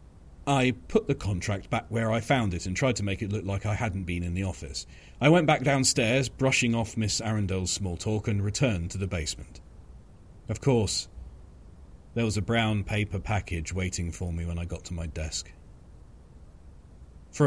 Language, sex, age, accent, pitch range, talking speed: English, male, 40-59, British, 85-115 Hz, 190 wpm